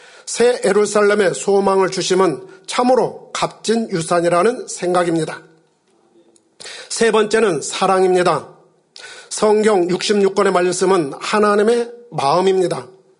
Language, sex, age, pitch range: Korean, male, 40-59, 185-230 Hz